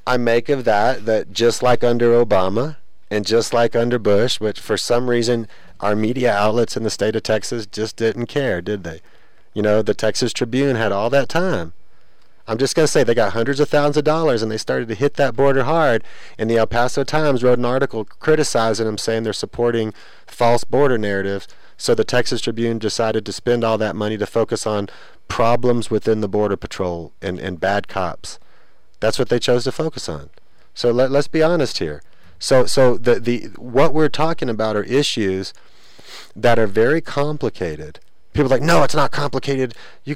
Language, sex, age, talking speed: English, male, 30-49, 200 wpm